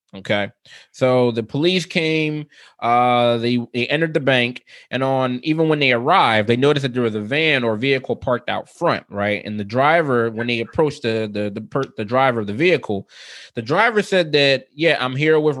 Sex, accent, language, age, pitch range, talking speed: male, American, English, 20-39, 110-145 Hz, 205 wpm